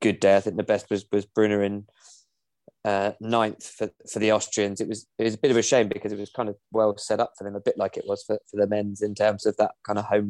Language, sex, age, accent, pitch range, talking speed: English, male, 20-39, British, 105-115 Hz, 295 wpm